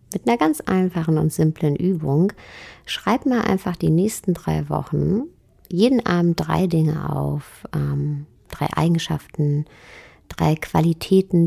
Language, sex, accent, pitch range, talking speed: German, female, German, 160-195 Hz, 125 wpm